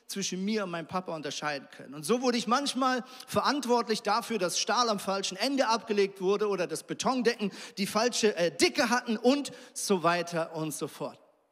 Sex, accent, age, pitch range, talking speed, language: male, German, 40-59, 190-250 Hz, 180 wpm, German